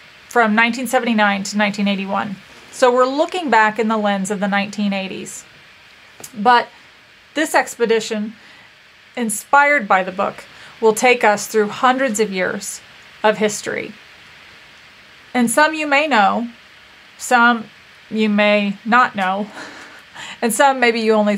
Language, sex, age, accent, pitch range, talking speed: English, female, 30-49, American, 210-245 Hz, 125 wpm